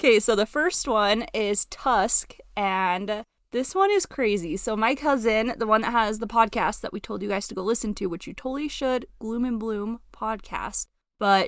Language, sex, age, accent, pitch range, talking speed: English, female, 20-39, American, 195-245 Hz, 205 wpm